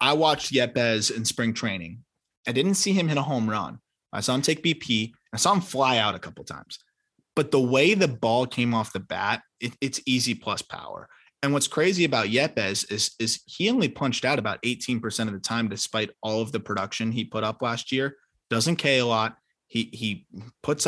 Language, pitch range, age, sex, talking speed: English, 110-130 Hz, 20-39, male, 215 wpm